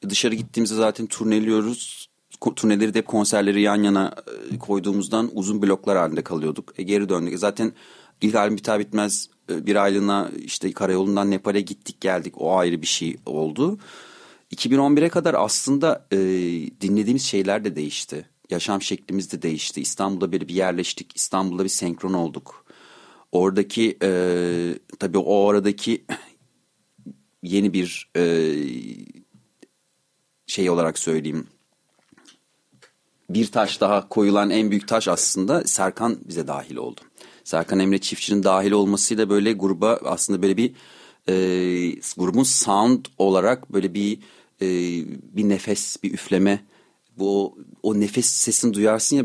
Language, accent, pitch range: Turkish, native, 95-105 Hz